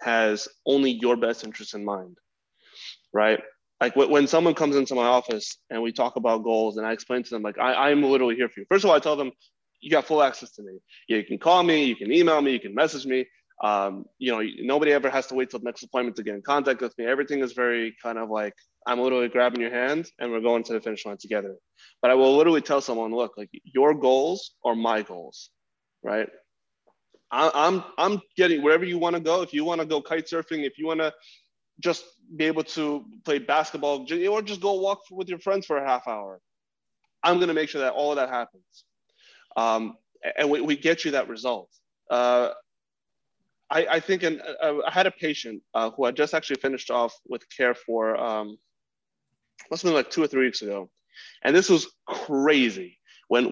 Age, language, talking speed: 20-39, English, 220 wpm